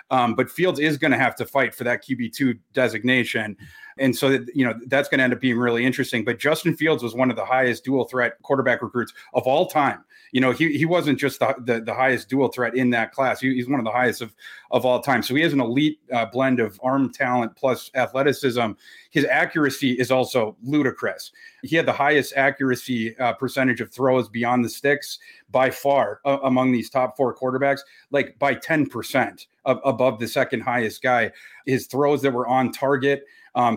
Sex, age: male, 30-49